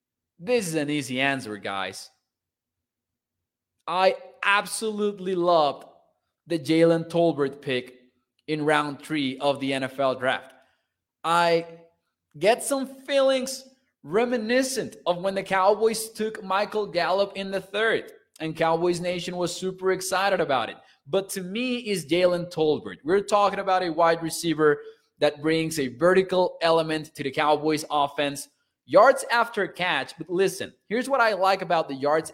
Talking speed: 140 wpm